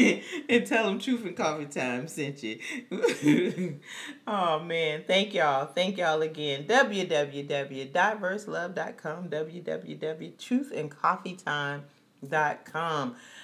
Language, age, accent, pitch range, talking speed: English, 40-59, American, 155-190 Hz, 80 wpm